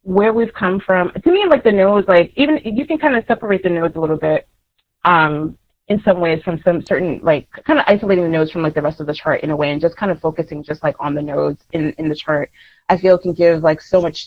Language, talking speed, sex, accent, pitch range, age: English, 275 wpm, female, American, 155-190 Hz, 30-49